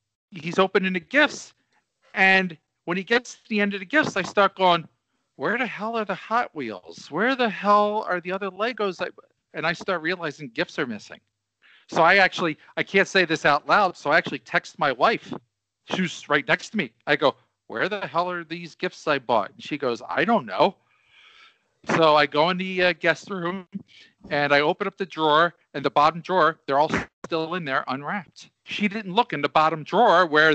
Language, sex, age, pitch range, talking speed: English, male, 40-59, 150-195 Hz, 210 wpm